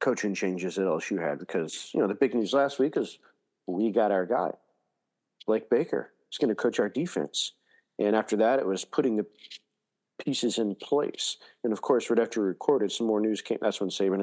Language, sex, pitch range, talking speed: English, male, 100-125 Hz, 205 wpm